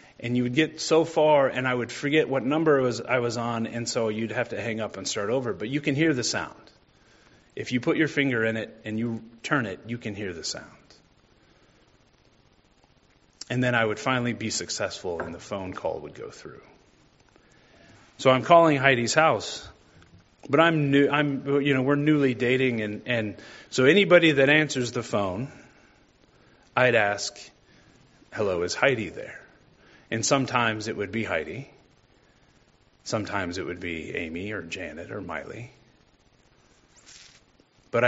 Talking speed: 170 wpm